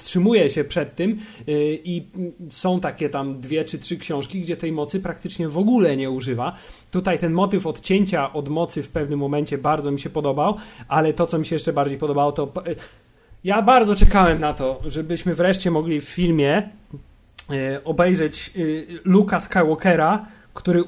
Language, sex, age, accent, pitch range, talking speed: Polish, male, 30-49, native, 145-180 Hz, 160 wpm